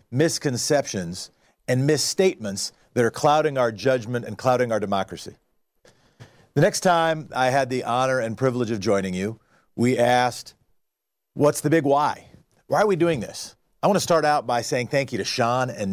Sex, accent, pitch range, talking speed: male, American, 105-140 Hz, 175 wpm